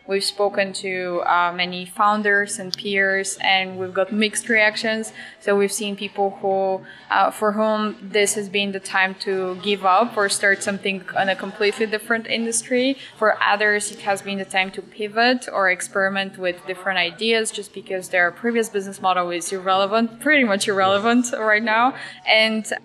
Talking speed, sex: 170 wpm, female